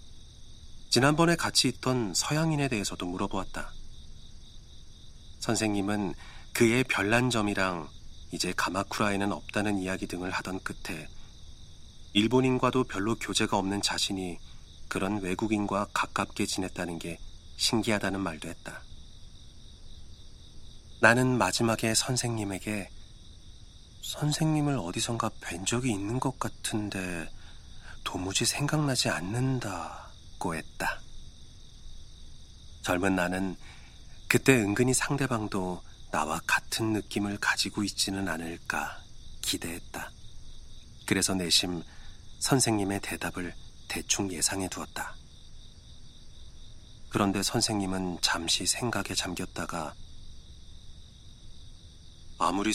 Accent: native